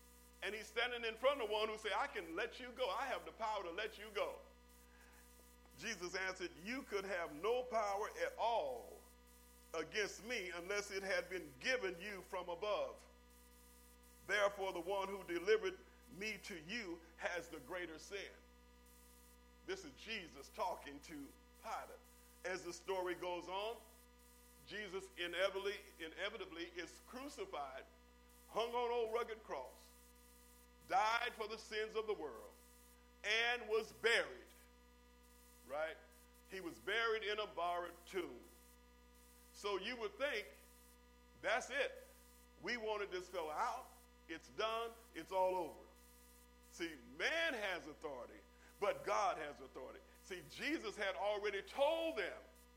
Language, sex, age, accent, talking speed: English, male, 50-69, American, 140 wpm